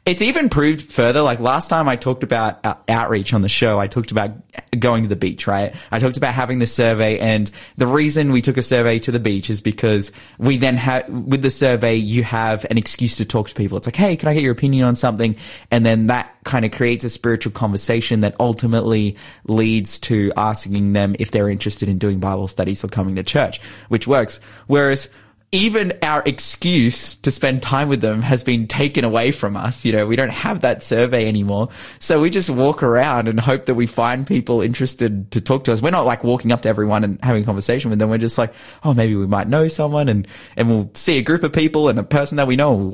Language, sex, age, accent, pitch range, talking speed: English, male, 20-39, Australian, 110-135 Hz, 235 wpm